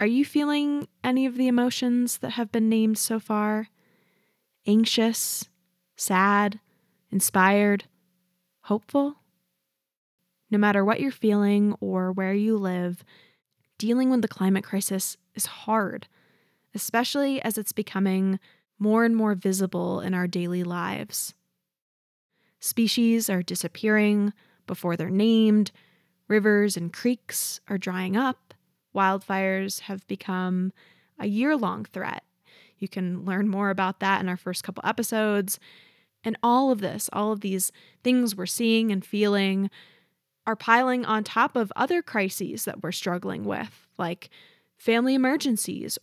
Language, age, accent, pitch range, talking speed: English, 10-29, American, 190-225 Hz, 130 wpm